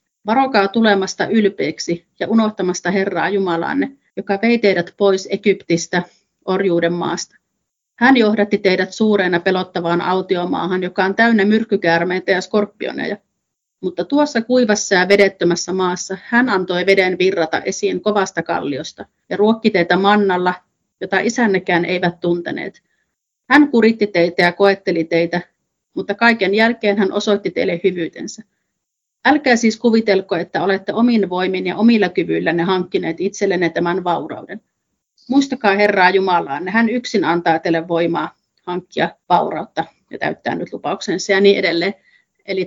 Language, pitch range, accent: Finnish, 180-210 Hz, native